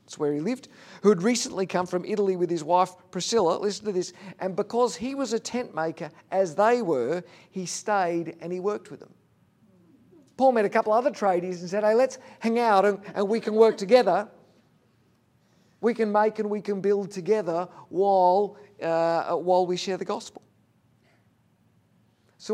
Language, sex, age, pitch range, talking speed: English, male, 50-69, 150-205 Hz, 180 wpm